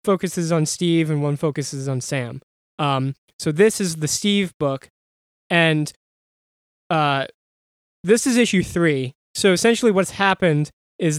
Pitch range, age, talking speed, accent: 140-180 Hz, 20-39, 140 wpm, American